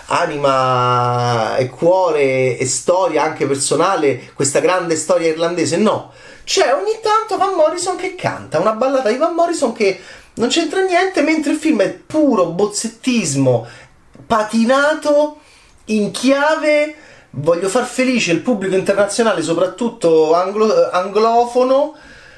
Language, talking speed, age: Italian, 120 wpm, 30-49